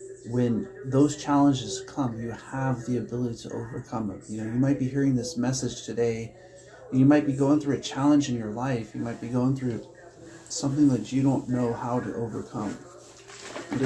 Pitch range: 115-135 Hz